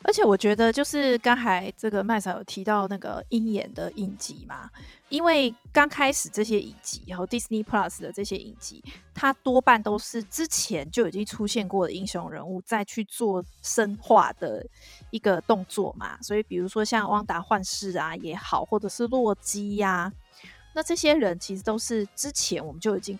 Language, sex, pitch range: Chinese, female, 195-245 Hz